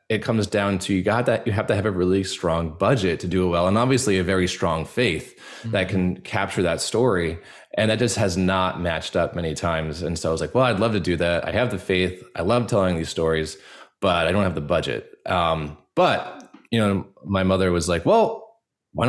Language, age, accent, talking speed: English, 20-39, American, 235 wpm